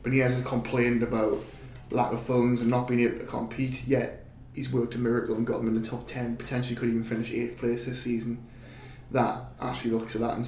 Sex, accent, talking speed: male, British, 230 wpm